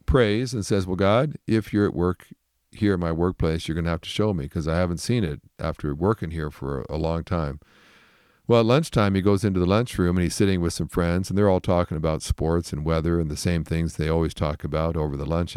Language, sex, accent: English, male, American